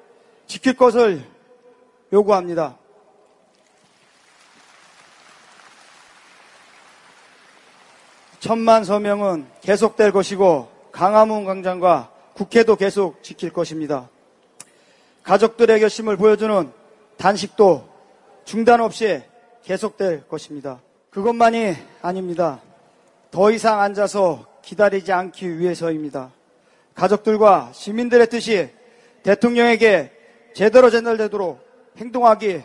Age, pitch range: 30-49, 185-225 Hz